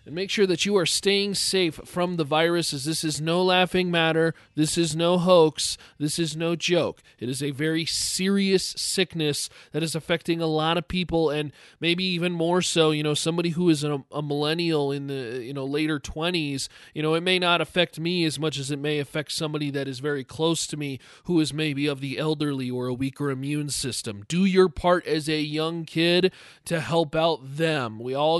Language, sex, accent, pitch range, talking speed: English, male, American, 150-185 Hz, 215 wpm